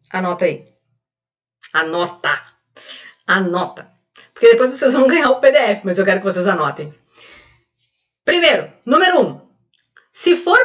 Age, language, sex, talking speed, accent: 40-59, Portuguese, female, 125 wpm, Brazilian